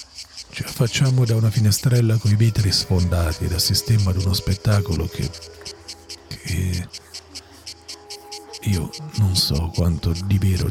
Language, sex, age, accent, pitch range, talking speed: Italian, male, 50-69, native, 90-115 Hz, 110 wpm